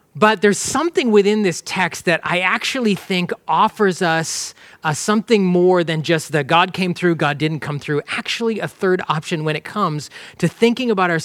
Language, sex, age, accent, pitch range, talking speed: English, male, 30-49, American, 155-195 Hz, 190 wpm